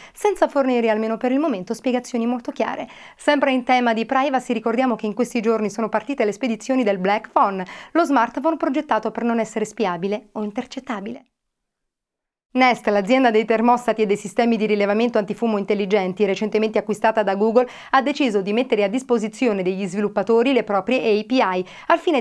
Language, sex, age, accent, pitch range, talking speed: Italian, female, 30-49, native, 210-255 Hz, 170 wpm